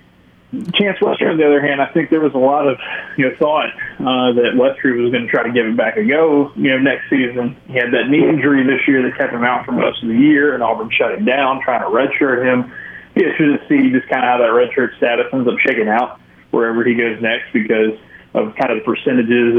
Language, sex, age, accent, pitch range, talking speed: English, male, 20-39, American, 115-145 Hz, 255 wpm